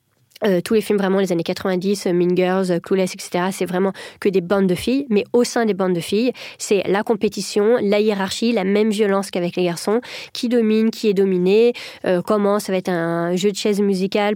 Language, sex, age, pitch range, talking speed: French, female, 20-39, 185-220 Hz, 220 wpm